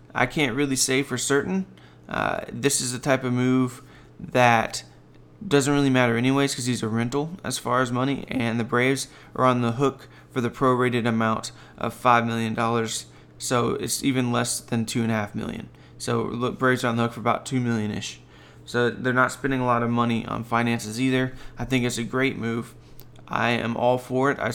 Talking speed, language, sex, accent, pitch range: 200 wpm, English, male, American, 115-130 Hz